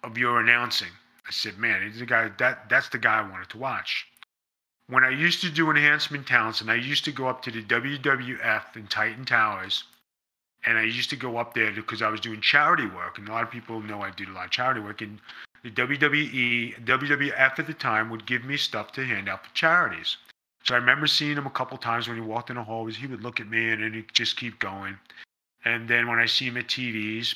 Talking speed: 240 wpm